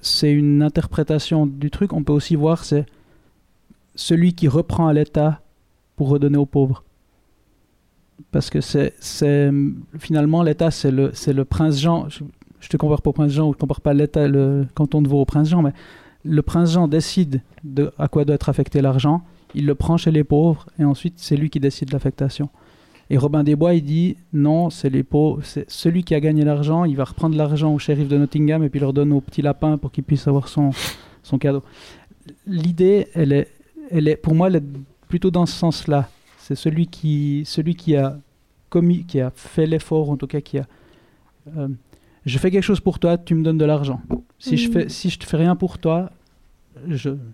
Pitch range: 140-165 Hz